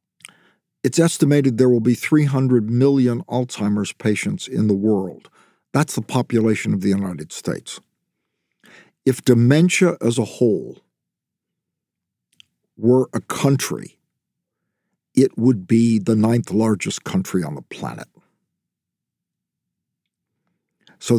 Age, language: 50-69, English